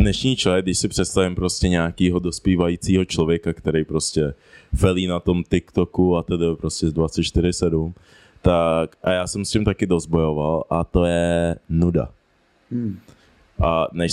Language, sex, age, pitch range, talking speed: Czech, male, 20-39, 90-115 Hz, 145 wpm